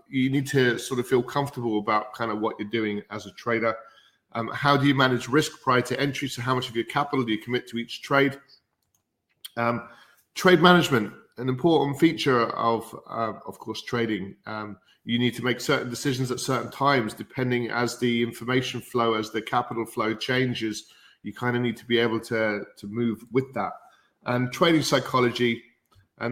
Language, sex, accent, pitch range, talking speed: English, male, British, 110-130 Hz, 190 wpm